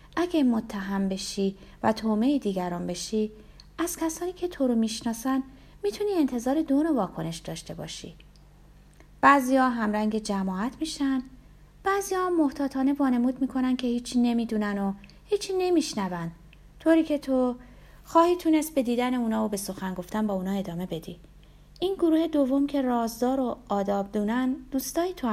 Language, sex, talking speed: Persian, female, 145 wpm